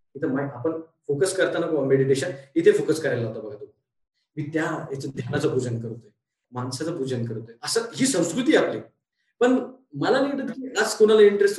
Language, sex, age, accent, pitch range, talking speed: Marathi, male, 20-39, native, 125-205 Hz, 150 wpm